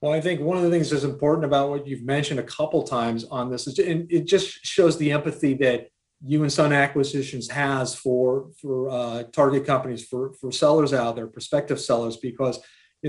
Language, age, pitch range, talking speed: English, 40-59, 135-160 Hz, 205 wpm